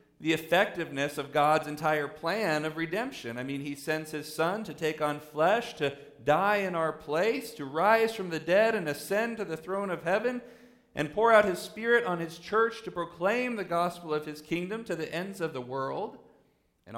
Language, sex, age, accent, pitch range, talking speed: English, male, 40-59, American, 150-185 Hz, 200 wpm